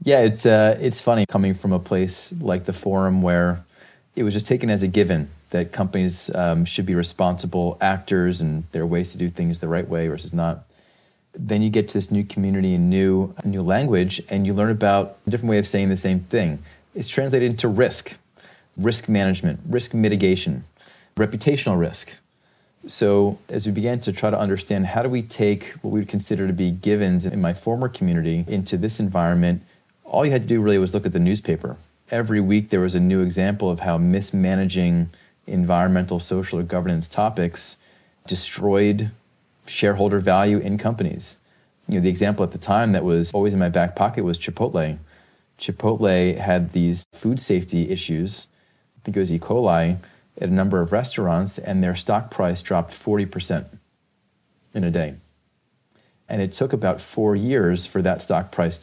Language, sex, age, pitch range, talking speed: English, male, 30-49, 90-105 Hz, 185 wpm